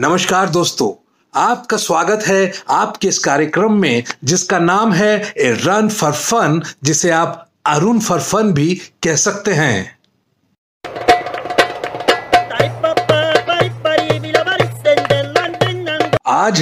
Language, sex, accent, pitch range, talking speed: Hindi, male, native, 160-225 Hz, 90 wpm